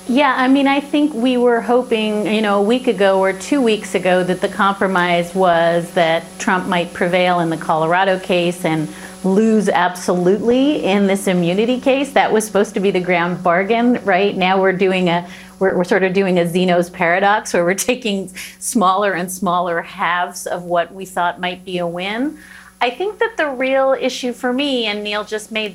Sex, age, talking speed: female, 40-59, 195 wpm